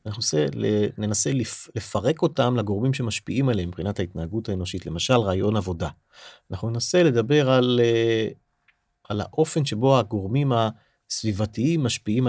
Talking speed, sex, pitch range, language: 110 wpm, male, 100-130 Hz, Hebrew